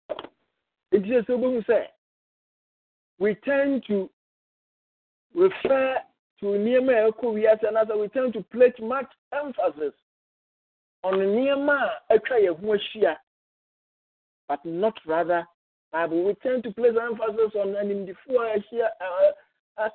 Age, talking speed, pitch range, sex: 50-69, 115 wpm, 195-250 Hz, male